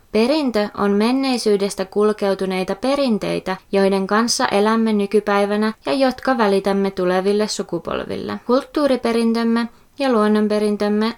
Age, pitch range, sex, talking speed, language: 20-39, 195-245 Hz, female, 90 wpm, Finnish